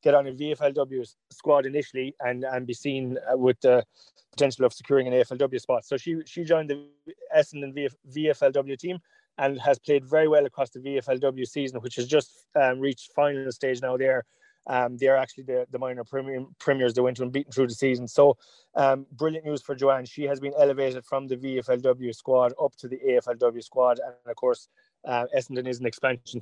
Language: English